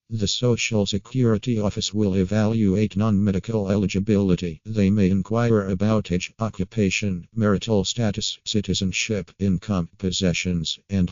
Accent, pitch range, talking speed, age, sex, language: American, 95-110 Hz, 110 wpm, 50-69, male, English